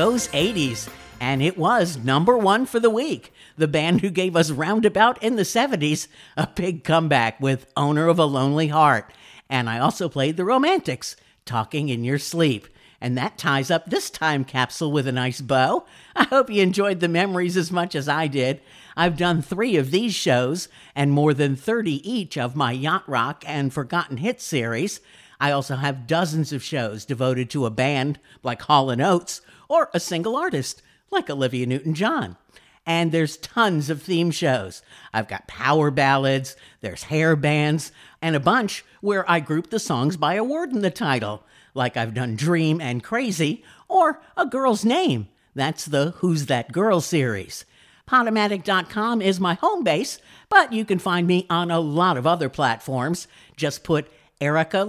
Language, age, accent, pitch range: English, 50-69, American, 135-185 Hz